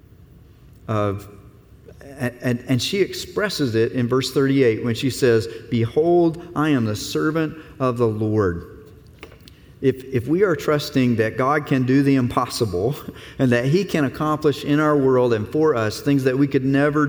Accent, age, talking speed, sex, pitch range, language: American, 40-59, 165 wpm, male, 125-165 Hz, English